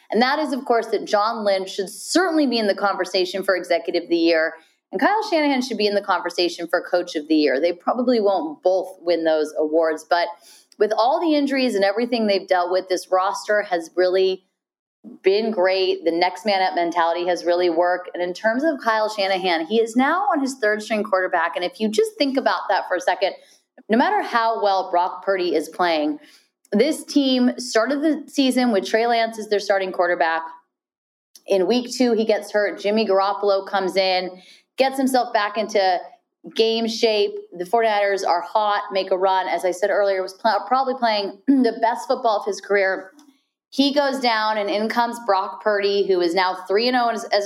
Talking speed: 200 wpm